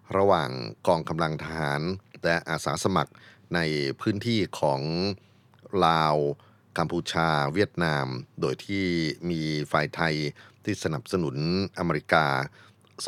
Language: Thai